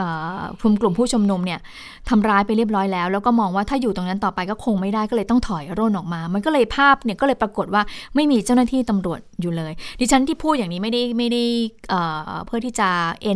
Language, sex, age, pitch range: Thai, female, 20-39, 190-240 Hz